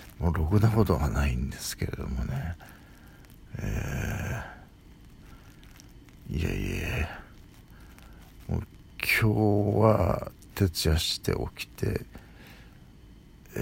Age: 60-79